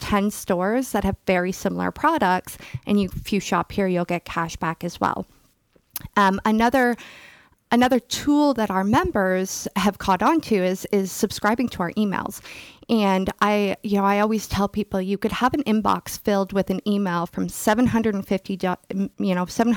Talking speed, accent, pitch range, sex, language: 185 wpm, American, 185-215 Hz, female, English